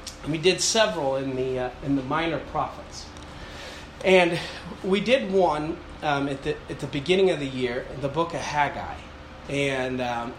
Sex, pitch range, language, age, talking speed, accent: male, 135-180 Hz, English, 30-49, 170 wpm, American